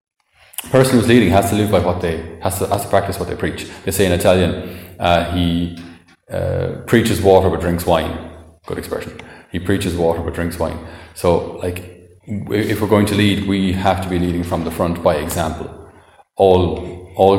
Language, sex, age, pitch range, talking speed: English, male, 30-49, 85-110 Hz, 195 wpm